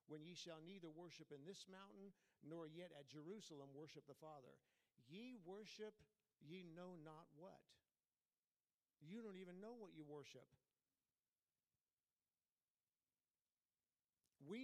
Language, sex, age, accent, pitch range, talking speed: English, male, 50-69, American, 150-200 Hz, 120 wpm